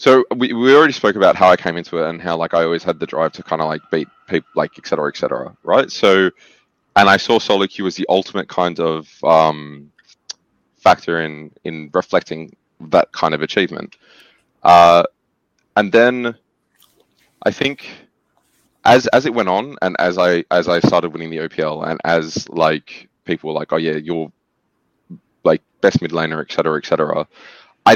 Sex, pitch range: male, 80-90 Hz